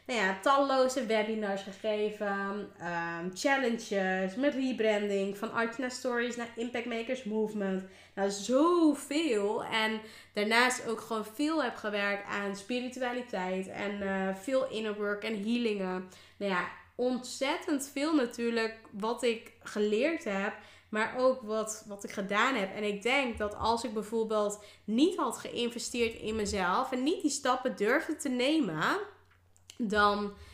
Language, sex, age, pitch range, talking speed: Dutch, female, 20-39, 195-245 Hz, 140 wpm